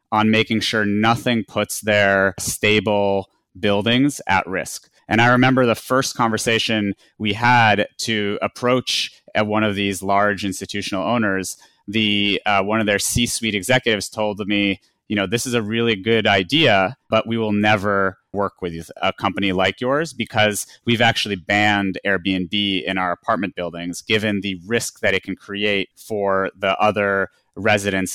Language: English